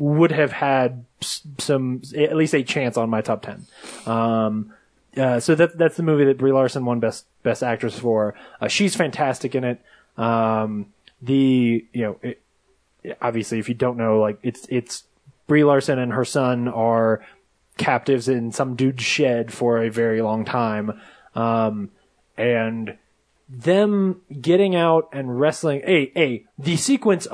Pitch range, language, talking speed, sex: 120-155 Hz, English, 160 wpm, male